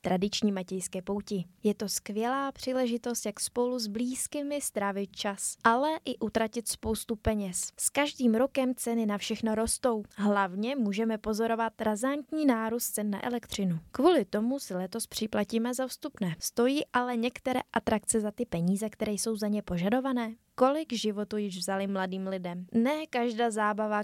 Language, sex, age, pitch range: Czech, female, 20-39, 205-250 Hz